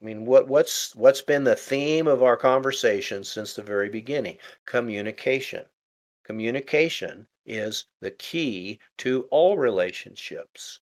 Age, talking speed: 50-69, 125 wpm